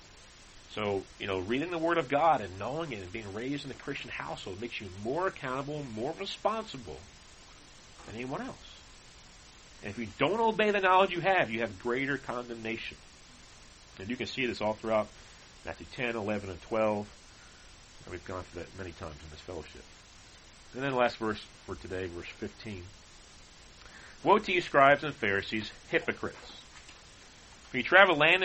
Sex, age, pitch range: male, 40-59, 95-130 Hz